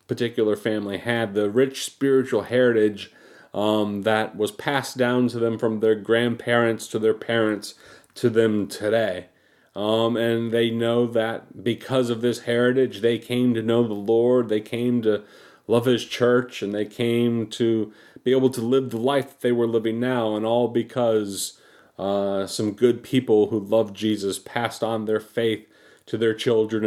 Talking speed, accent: 165 wpm, American